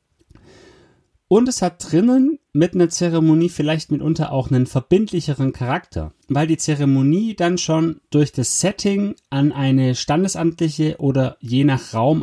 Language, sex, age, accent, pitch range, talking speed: German, male, 30-49, German, 105-150 Hz, 135 wpm